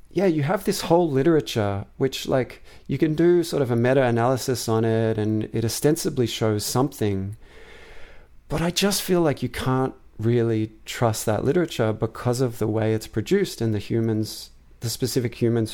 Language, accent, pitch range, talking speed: English, Australian, 110-140 Hz, 170 wpm